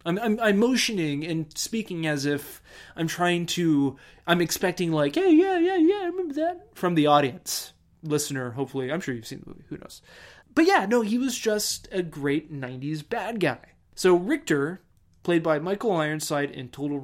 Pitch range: 135-190 Hz